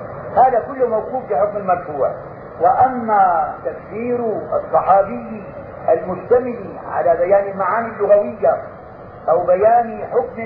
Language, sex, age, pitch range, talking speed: Arabic, male, 50-69, 190-240 Hz, 90 wpm